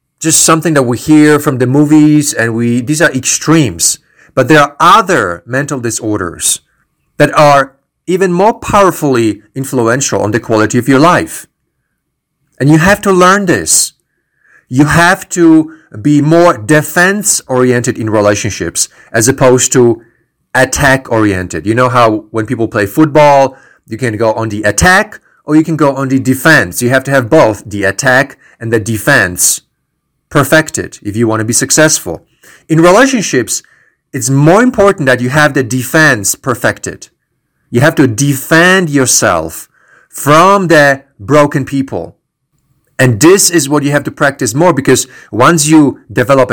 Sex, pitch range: male, 115-155 Hz